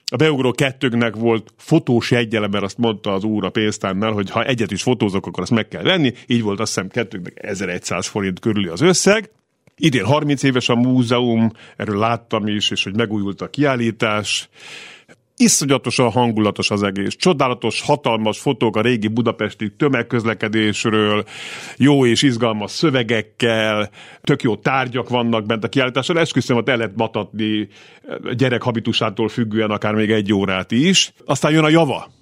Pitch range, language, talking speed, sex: 110-145 Hz, Hungarian, 150 wpm, male